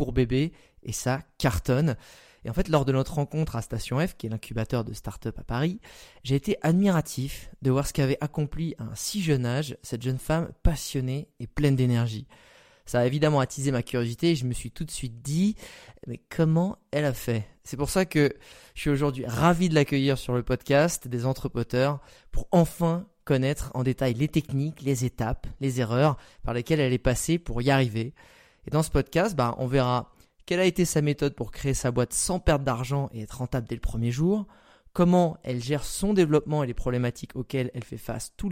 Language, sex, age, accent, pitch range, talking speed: French, male, 20-39, French, 125-155 Hz, 210 wpm